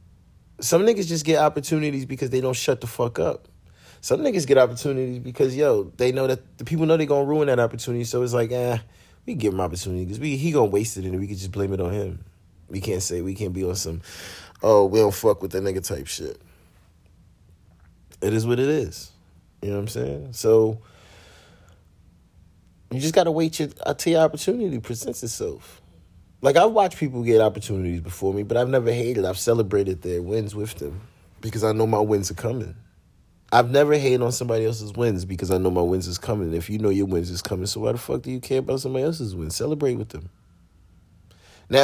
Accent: American